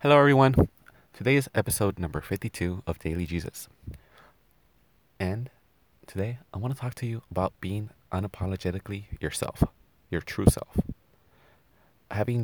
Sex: male